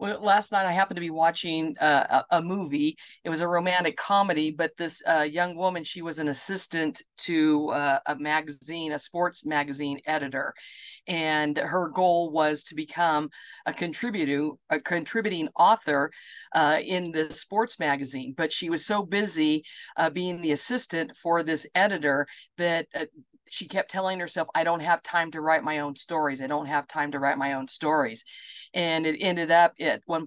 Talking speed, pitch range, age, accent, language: 180 wpm, 155-190 Hz, 50-69, American, English